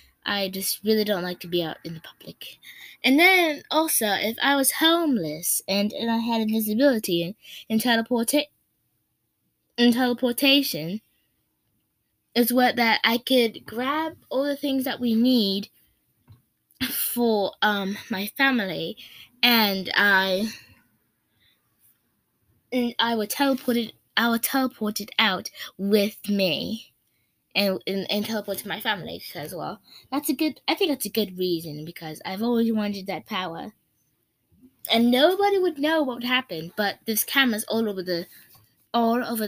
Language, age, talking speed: English, 20-39, 150 wpm